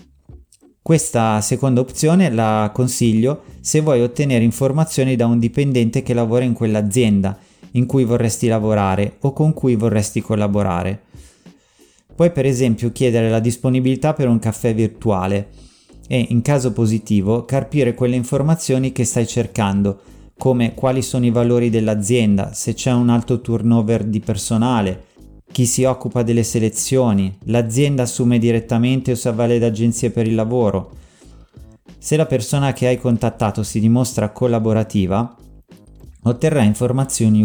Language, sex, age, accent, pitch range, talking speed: Italian, male, 30-49, native, 110-130 Hz, 135 wpm